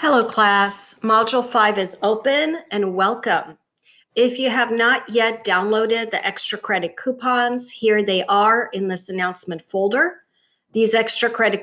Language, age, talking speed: English, 40-59, 145 wpm